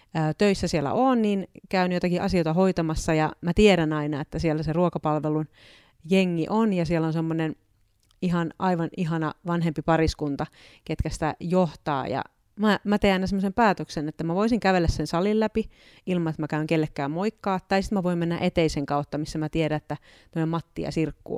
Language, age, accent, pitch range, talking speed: Finnish, 30-49, native, 155-190 Hz, 175 wpm